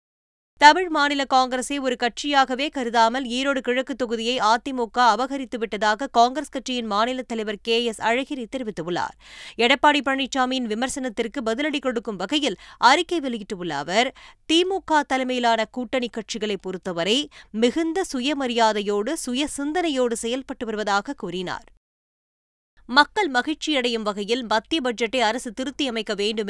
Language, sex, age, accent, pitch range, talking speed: Tamil, female, 20-39, native, 220-275 Hz, 105 wpm